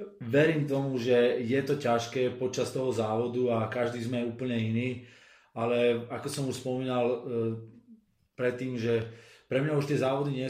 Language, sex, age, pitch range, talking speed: Slovak, male, 20-39, 120-130 Hz, 155 wpm